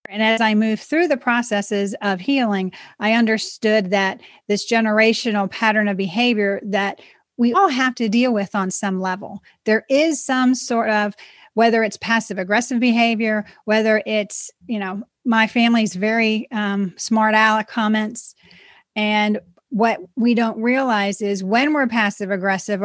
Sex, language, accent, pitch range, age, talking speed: female, English, American, 210-240 Hz, 40-59, 150 wpm